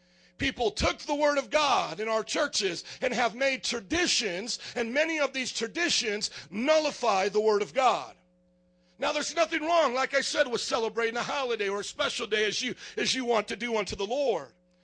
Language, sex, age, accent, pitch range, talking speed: English, male, 50-69, American, 195-265 Hz, 195 wpm